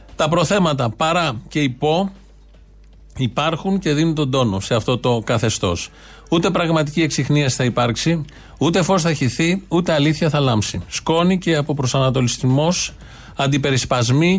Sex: male